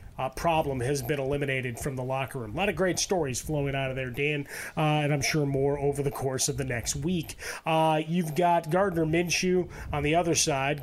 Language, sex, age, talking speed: English, male, 30-49, 220 wpm